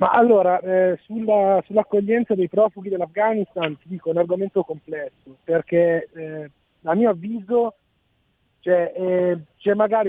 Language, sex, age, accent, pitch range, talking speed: Italian, male, 40-59, native, 160-185 Hz, 135 wpm